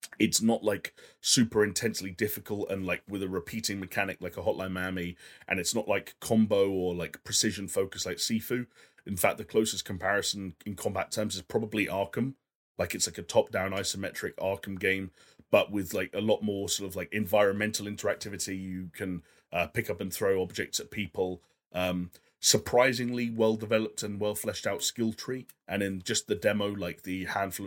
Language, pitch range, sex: English, 95-110 Hz, male